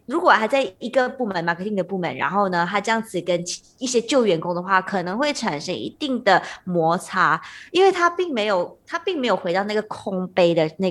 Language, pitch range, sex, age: Chinese, 185-270 Hz, female, 20-39